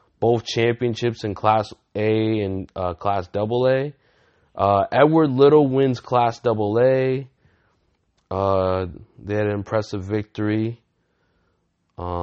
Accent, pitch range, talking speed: American, 85-110 Hz, 105 wpm